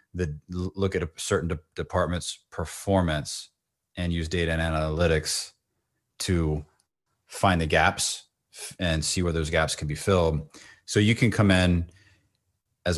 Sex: male